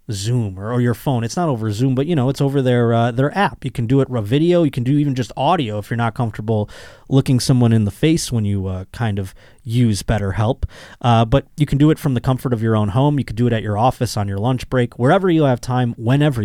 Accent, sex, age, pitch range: American, male, 20-39, 110-145 Hz